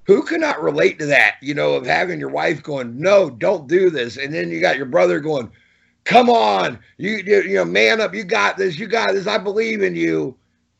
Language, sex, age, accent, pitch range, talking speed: English, male, 50-69, American, 150-220 Hz, 230 wpm